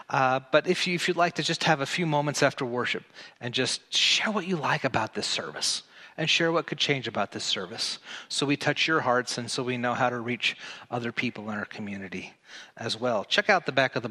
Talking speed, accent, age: 240 wpm, American, 30-49